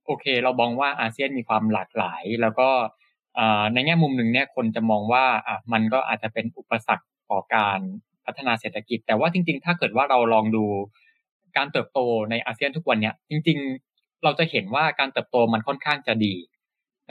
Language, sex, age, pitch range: Thai, male, 20-39, 115-155 Hz